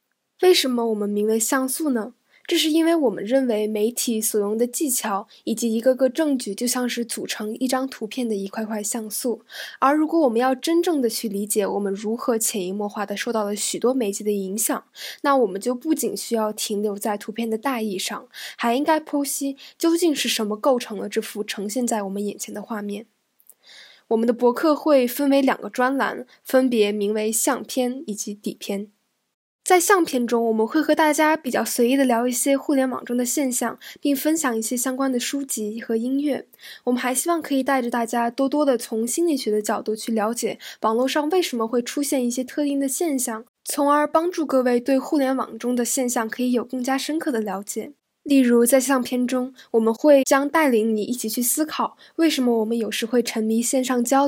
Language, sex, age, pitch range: Chinese, female, 10-29, 220-275 Hz